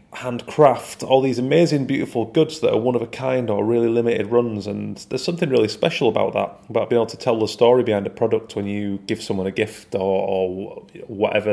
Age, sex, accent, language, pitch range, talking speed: 30-49, male, British, English, 100-120 Hz, 220 wpm